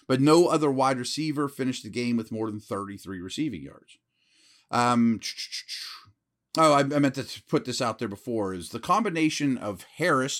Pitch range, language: 110-150 Hz, English